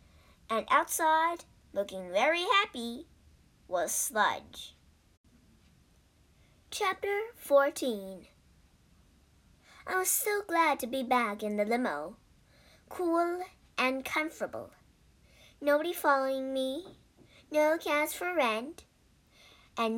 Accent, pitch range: American, 215-315 Hz